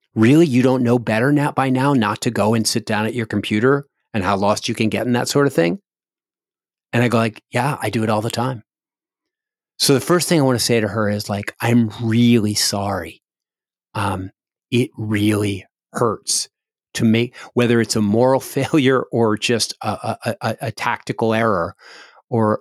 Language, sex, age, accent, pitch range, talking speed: English, male, 40-59, American, 110-135 Hz, 195 wpm